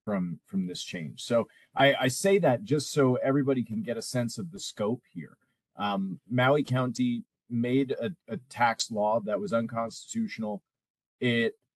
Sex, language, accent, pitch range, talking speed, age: male, English, American, 115-150 Hz, 165 wpm, 30-49